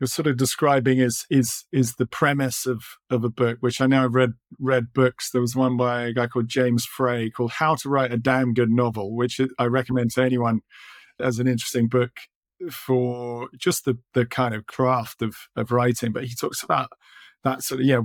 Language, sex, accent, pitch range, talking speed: English, male, British, 120-135 Hz, 210 wpm